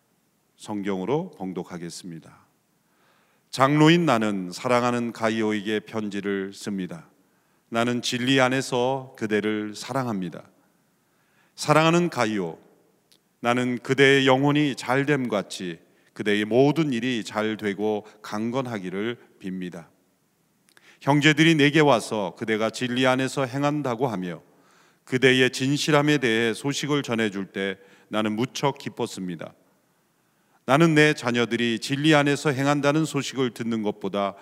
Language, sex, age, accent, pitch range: Korean, male, 40-59, native, 110-140 Hz